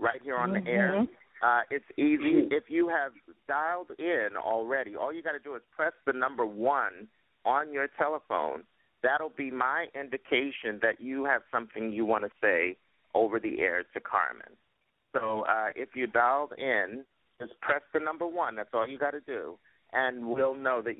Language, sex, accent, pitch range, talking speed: English, male, American, 115-145 Hz, 185 wpm